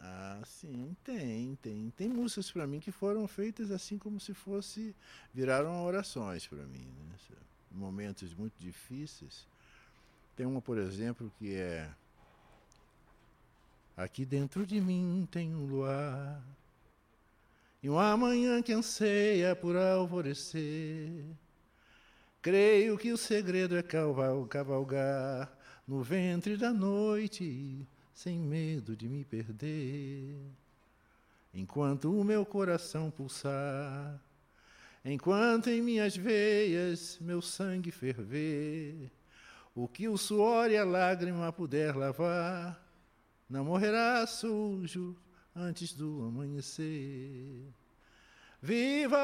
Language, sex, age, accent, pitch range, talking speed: Portuguese, male, 60-79, Brazilian, 135-205 Hz, 105 wpm